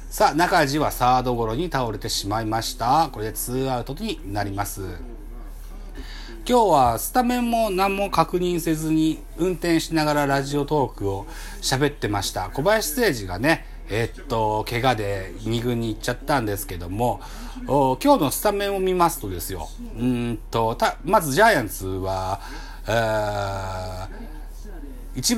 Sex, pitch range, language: male, 105-155 Hz, Japanese